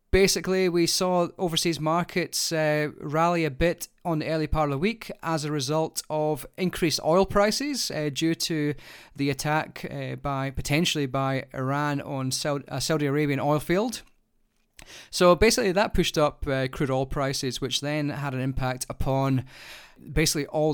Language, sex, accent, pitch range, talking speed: English, male, British, 135-165 Hz, 165 wpm